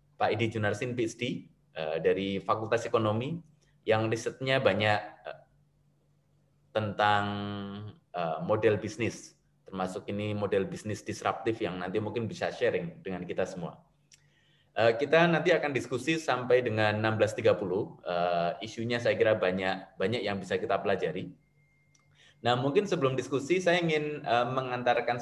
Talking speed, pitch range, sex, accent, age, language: 115 wpm, 105-145 Hz, male, native, 20-39, Indonesian